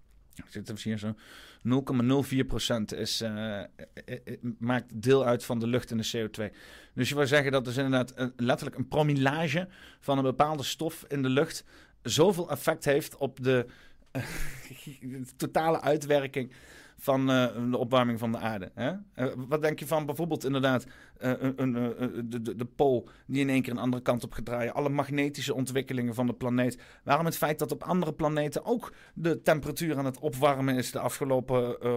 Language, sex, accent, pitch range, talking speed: Dutch, male, Dutch, 125-160 Hz, 185 wpm